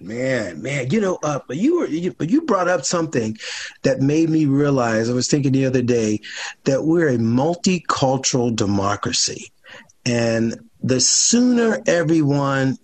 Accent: American